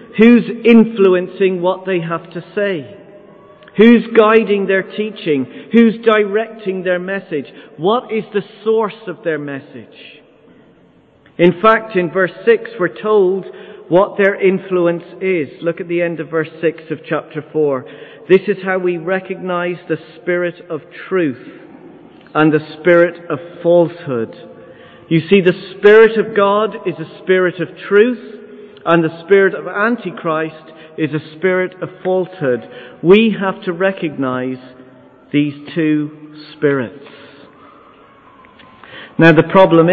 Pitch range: 150-195 Hz